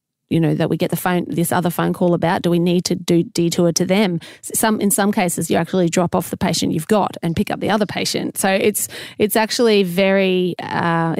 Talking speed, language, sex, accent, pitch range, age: 235 wpm, English, female, Australian, 170-200 Hz, 30-49